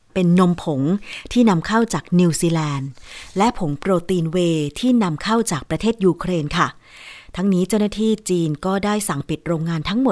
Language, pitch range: Thai, 160-210 Hz